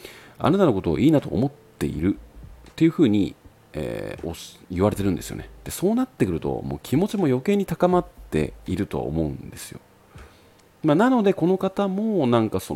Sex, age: male, 40-59